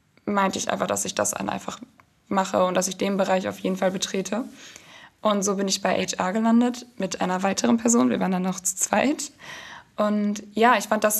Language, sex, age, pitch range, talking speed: German, female, 10-29, 195-235 Hz, 210 wpm